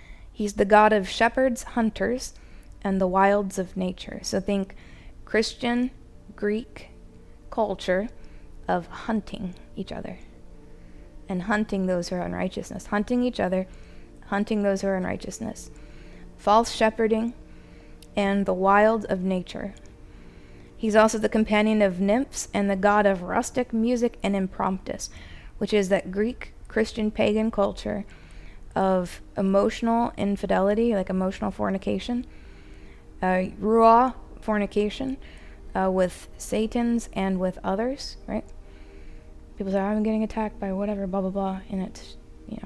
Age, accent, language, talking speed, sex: 20-39, American, English, 125 wpm, female